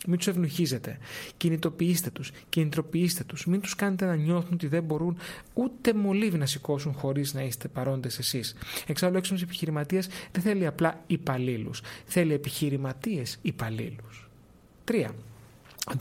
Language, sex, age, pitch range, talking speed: Greek, male, 30-49, 140-185 Hz, 130 wpm